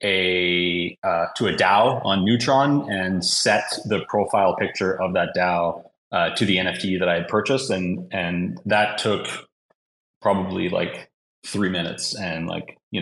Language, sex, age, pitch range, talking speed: English, male, 30-49, 85-100 Hz, 155 wpm